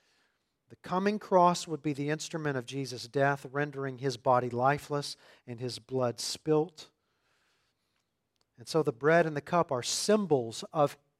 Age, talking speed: 40-59, 150 wpm